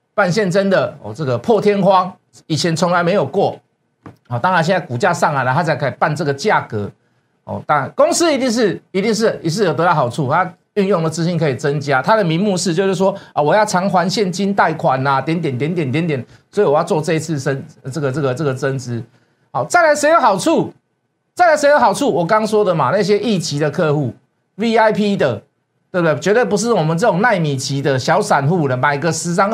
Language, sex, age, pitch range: Chinese, male, 50-69, 150-215 Hz